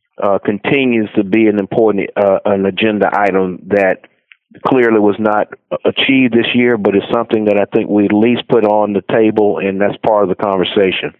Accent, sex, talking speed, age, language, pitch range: American, male, 195 wpm, 50-69, English, 100-115 Hz